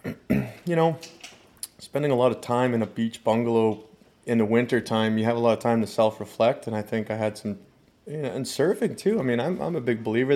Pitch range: 110-115 Hz